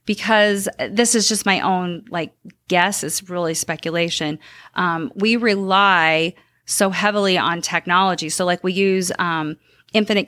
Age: 40-59